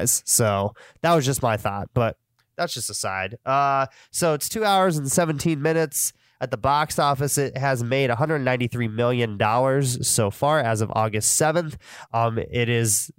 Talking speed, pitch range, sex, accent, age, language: 170 wpm, 110-135 Hz, male, American, 20-39, English